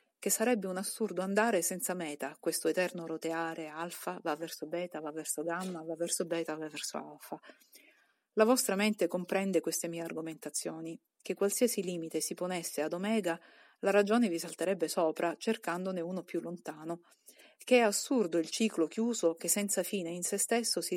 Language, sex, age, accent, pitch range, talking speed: Italian, female, 40-59, native, 165-205 Hz, 170 wpm